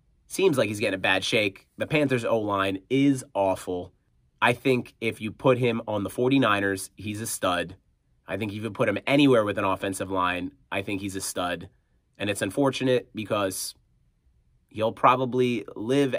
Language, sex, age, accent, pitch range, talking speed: English, male, 30-49, American, 90-130 Hz, 175 wpm